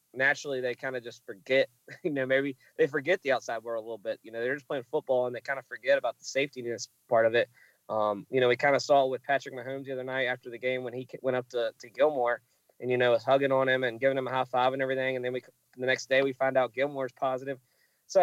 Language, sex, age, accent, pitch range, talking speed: English, male, 20-39, American, 125-145 Hz, 285 wpm